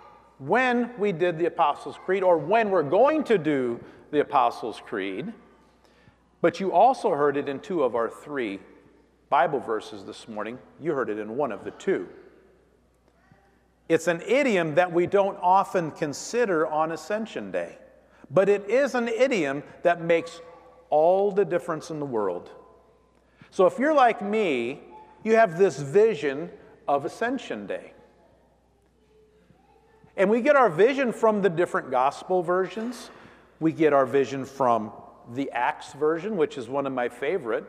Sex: male